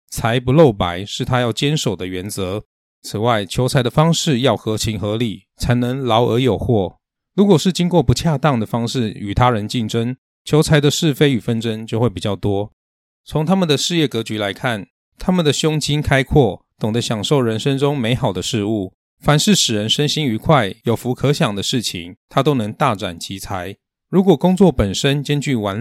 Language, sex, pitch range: Chinese, male, 105-145 Hz